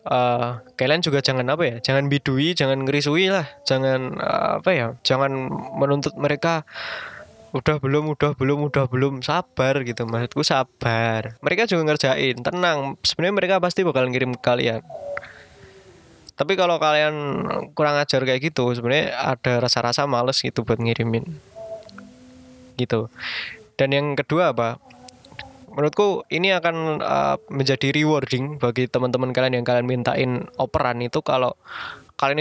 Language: Indonesian